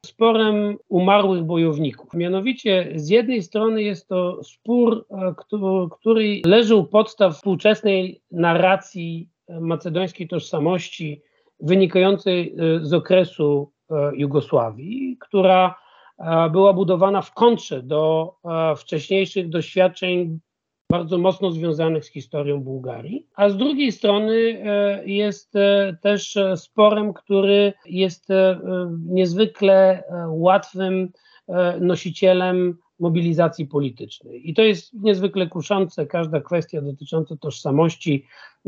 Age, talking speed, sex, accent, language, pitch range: 50-69, 95 wpm, male, native, Polish, 160-195 Hz